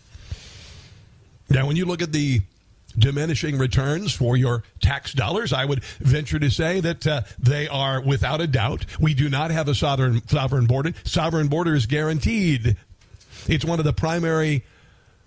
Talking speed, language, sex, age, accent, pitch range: 160 wpm, English, male, 50-69, American, 120-160 Hz